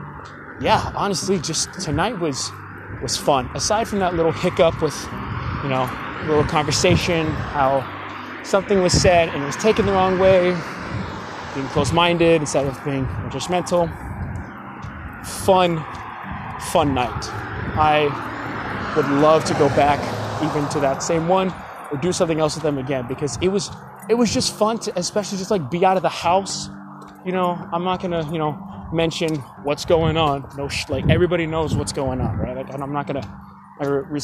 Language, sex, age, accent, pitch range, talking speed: English, male, 20-39, American, 140-180 Hz, 170 wpm